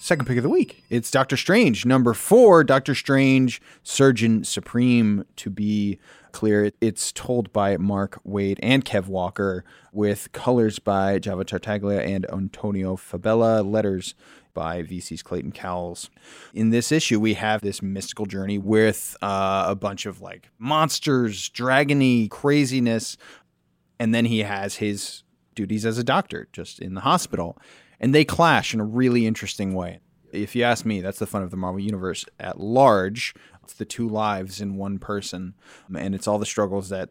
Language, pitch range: English, 95-120 Hz